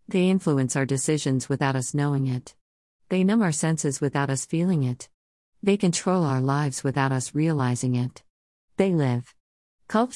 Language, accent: English, American